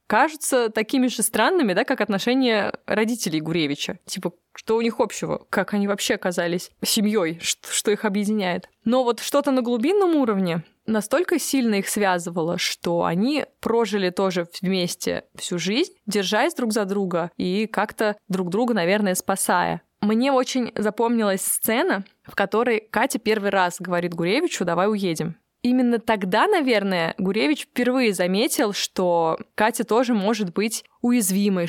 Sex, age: female, 20-39